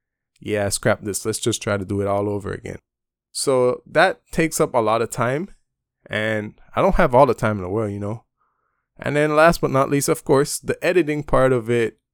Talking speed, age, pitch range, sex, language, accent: 225 wpm, 20-39, 105-135 Hz, male, English, American